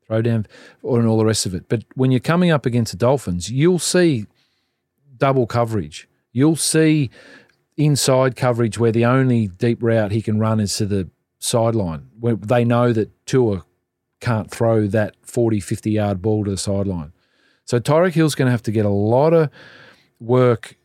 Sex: male